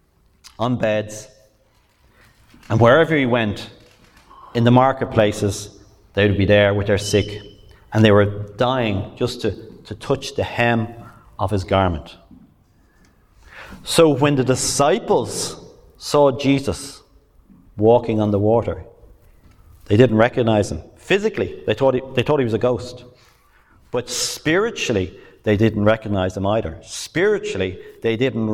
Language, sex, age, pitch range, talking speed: English, male, 40-59, 105-125 Hz, 130 wpm